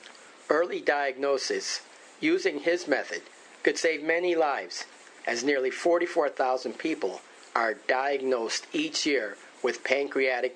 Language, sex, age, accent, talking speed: English, male, 50-69, American, 110 wpm